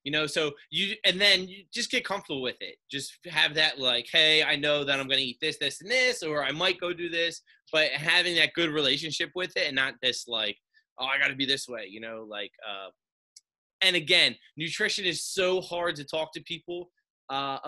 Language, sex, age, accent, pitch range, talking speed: English, male, 20-39, American, 135-165 Hz, 225 wpm